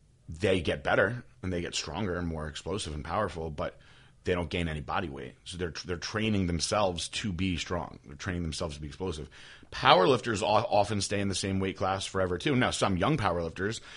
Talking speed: 200 wpm